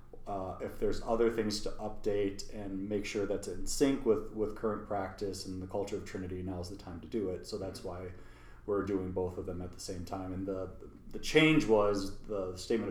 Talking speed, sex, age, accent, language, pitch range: 225 wpm, male, 30-49, American, English, 95-110 Hz